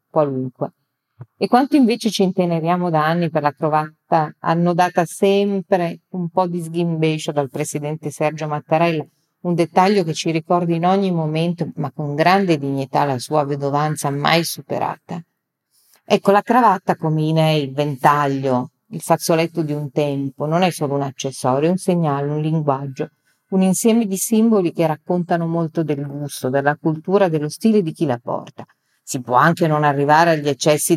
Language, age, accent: Italian, 40-59, native